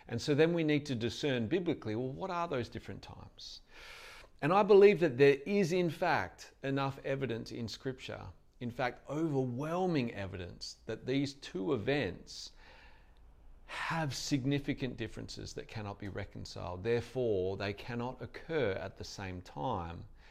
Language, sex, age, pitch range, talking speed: English, male, 40-59, 105-140 Hz, 145 wpm